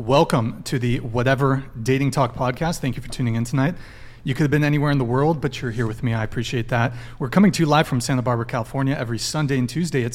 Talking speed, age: 255 wpm, 30-49